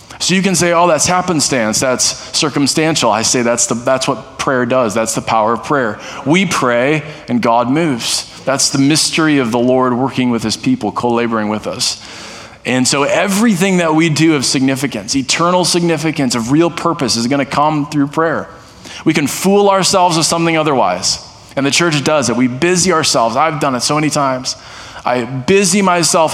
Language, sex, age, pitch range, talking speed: English, male, 20-39, 115-150 Hz, 185 wpm